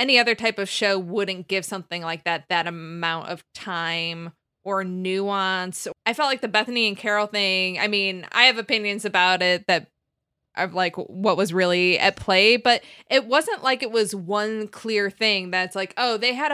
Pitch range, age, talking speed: 175-225 Hz, 20-39, 190 wpm